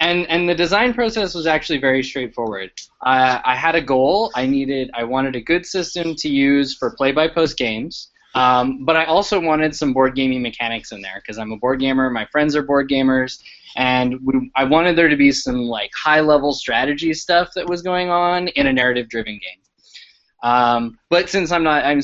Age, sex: 20-39, male